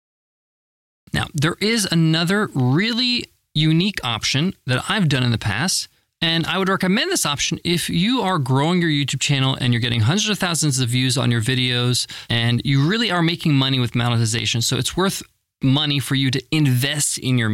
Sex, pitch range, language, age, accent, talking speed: male, 135-190 Hz, English, 20-39, American, 190 wpm